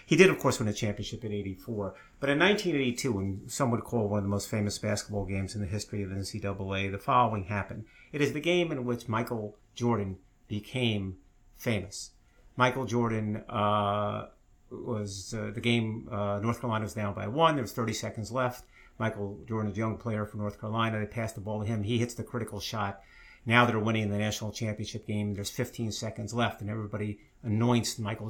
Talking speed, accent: 200 wpm, American